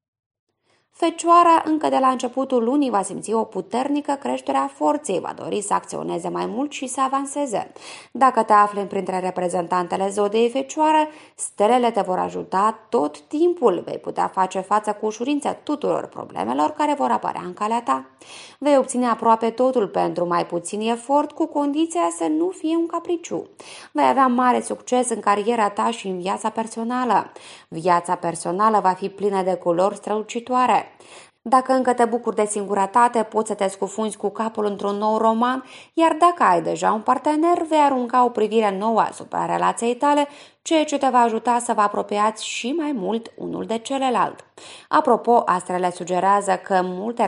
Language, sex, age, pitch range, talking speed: Romanian, female, 20-39, 195-275 Hz, 165 wpm